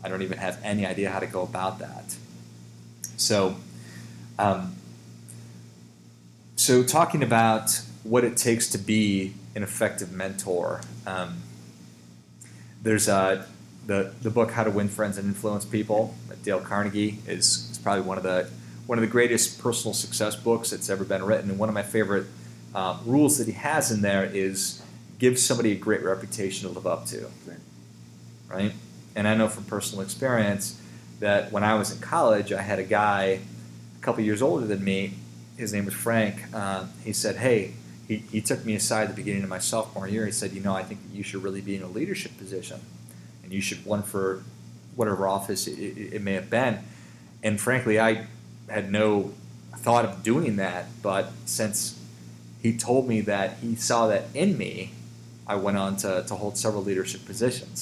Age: 30-49